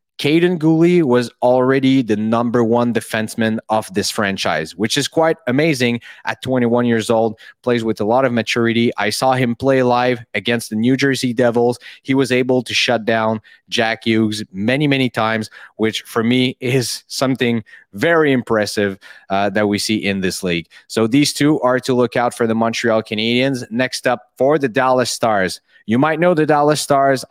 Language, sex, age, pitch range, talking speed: English, male, 30-49, 110-130 Hz, 180 wpm